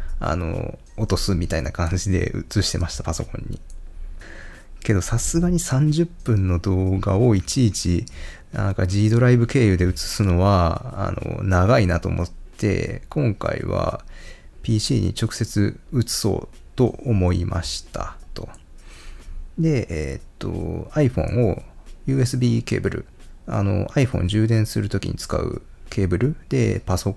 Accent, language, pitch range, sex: native, Japanese, 85-115 Hz, male